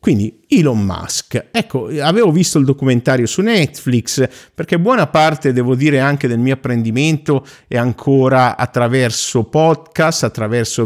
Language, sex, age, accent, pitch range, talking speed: Italian, male, 50-69, native, 110-135 Hz, 135 wpm